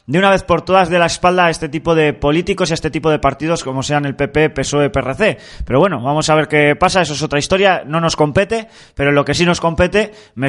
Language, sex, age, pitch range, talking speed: Spanish, male, 20-39, 150-225 Hz, 265 wpm